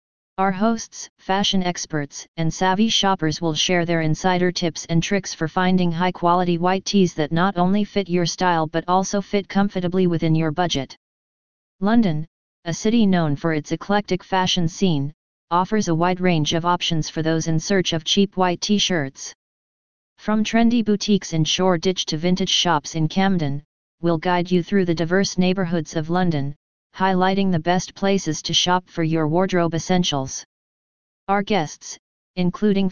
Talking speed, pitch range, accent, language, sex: 160 wpm, 165-190 Hz, American, English, female